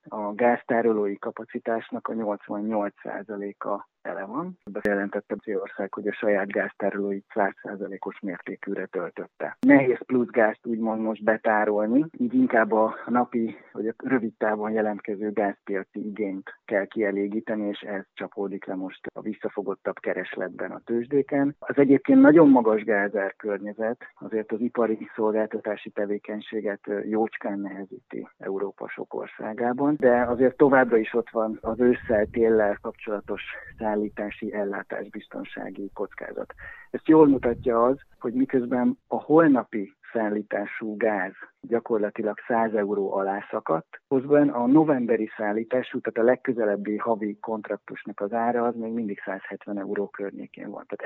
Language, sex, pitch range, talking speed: Hungarian, male, 105-125 Hz, 125 wpm